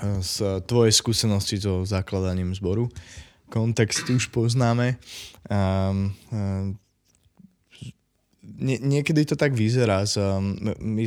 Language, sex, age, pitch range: Slovak, male, 20-39, 95-115 Hz